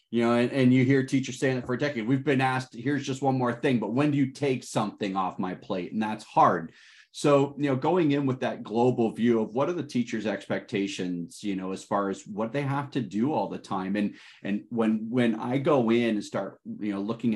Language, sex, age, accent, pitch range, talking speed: English, male, 30-49, American, 110-140 Hz, 250 wpm